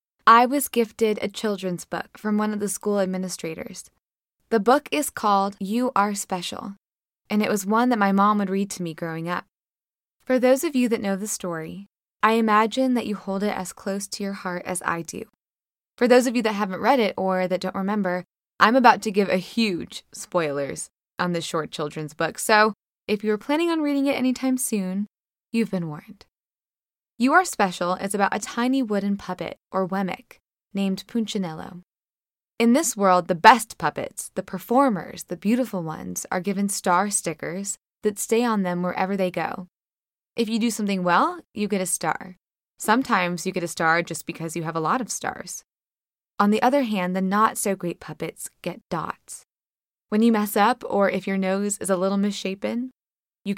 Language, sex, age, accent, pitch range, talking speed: English, female, 20-39, American, 185-225 Hz, 190 wpm